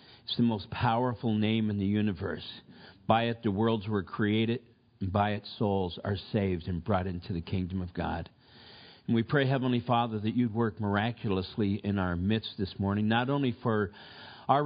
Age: 50-69